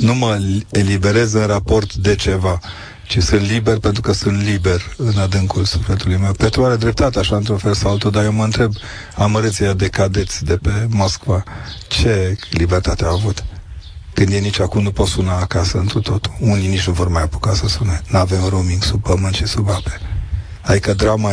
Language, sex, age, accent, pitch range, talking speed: Romanian, male, 40-59, native, 95-110 Hz, 185 wpm